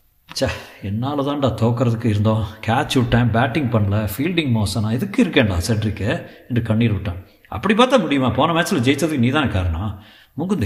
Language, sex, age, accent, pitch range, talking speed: Tamil, male, 50-69, native, 110-145 Hz, 140 wpm